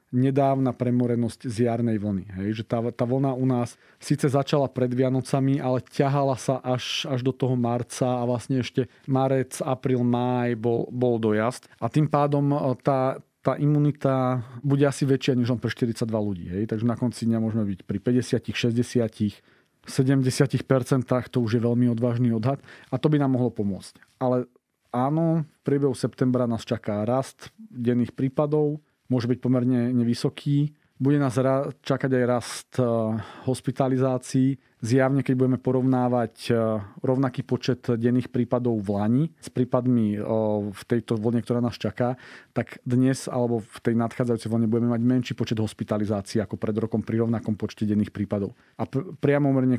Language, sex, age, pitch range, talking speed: Slovak, male, 40-59, 115-135 Hz, 160 wpm